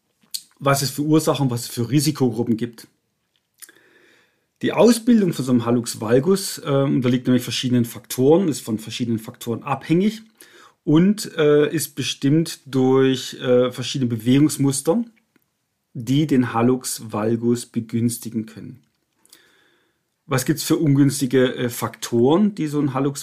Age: 40-59